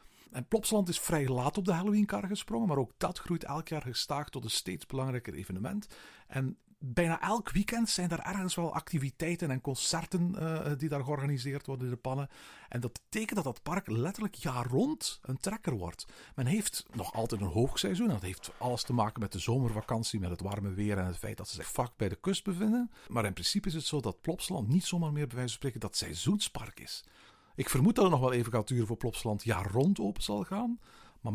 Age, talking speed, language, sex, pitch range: 50-69, 225 wpm, Dutch, male, 110-170 Hz